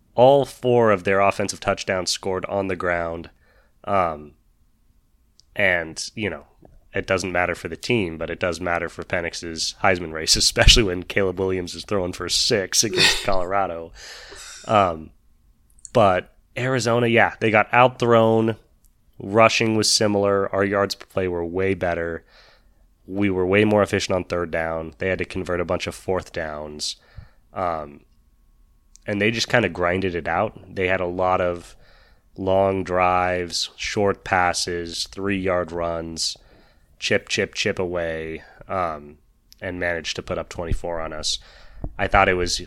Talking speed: 155 wpm